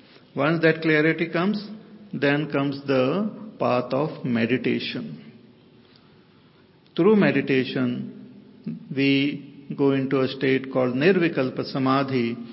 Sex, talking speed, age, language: male, 95 wpm, 50-69, English